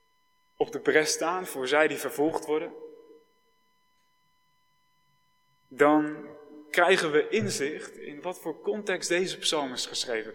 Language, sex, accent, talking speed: Dutch, male, Dutch, 120 wpm